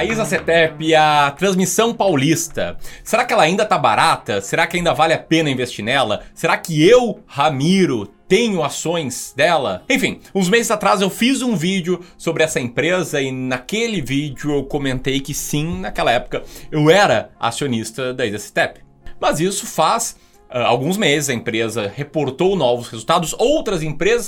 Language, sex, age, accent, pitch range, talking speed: Portuguese, male, 20-39, Brazilian, 125-180 Hz, 155 wpm